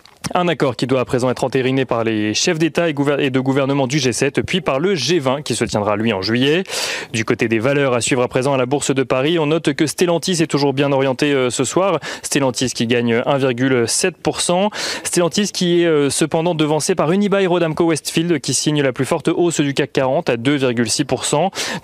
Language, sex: French, male